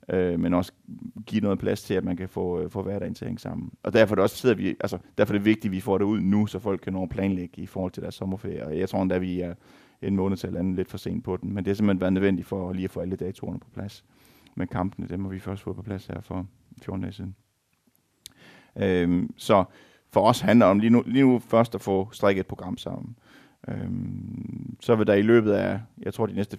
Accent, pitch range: native, 95-105 Hz